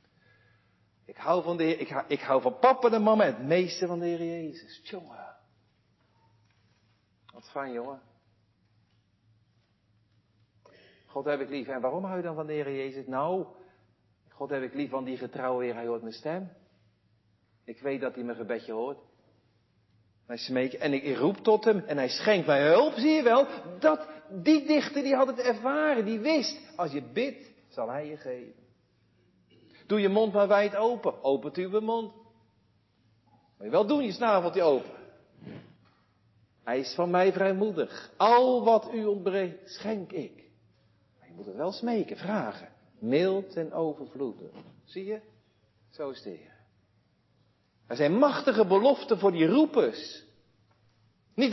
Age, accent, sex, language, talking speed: 50-69, Dutch, male, Dutch, 165 wpm